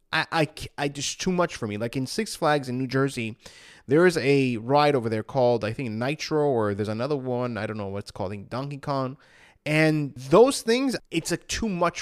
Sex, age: male, 20-39